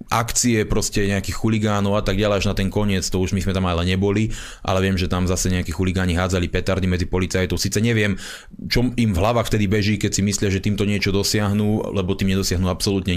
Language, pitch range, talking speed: Slovak, 100-115 Hz, 225 wpm